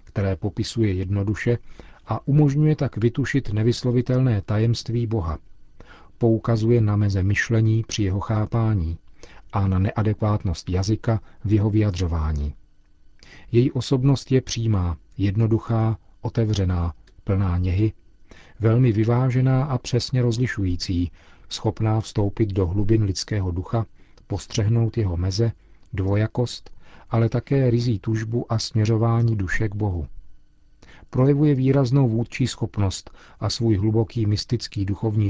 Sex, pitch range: male, 100-120 Hz